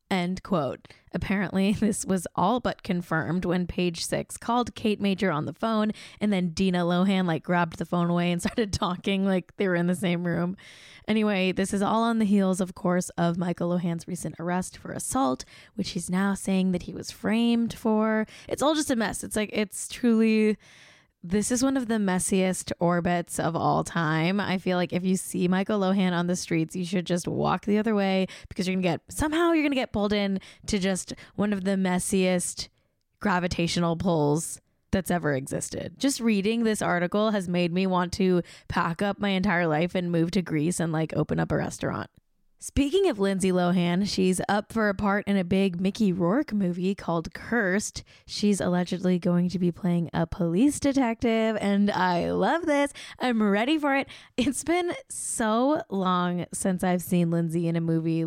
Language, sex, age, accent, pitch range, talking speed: English, female, 10-29, American, 175-215 Hz, 195 wpm